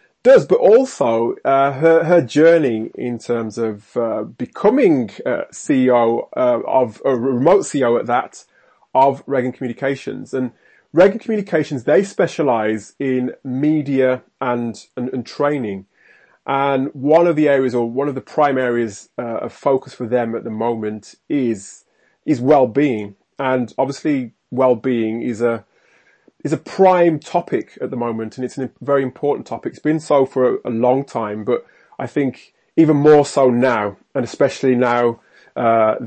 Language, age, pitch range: English, 30-49, 120-140 Hz